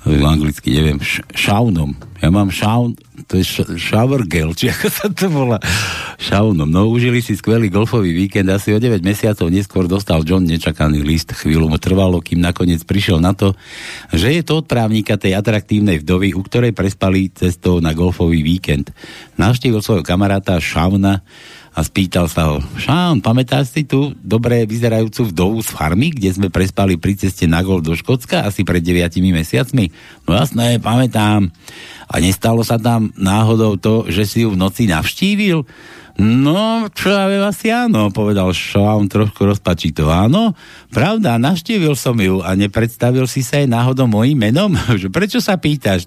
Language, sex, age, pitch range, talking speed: Slovak, male, 60-79, 90-120 Hz, 165 wpm